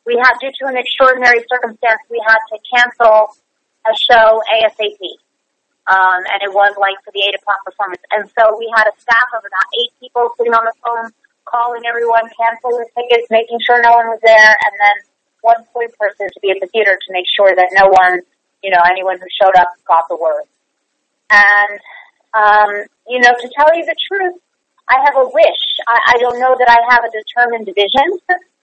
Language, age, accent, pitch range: English, 30-49, American, 210-270 Hz